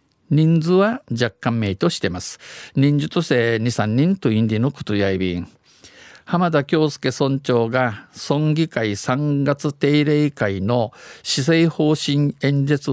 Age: 50-69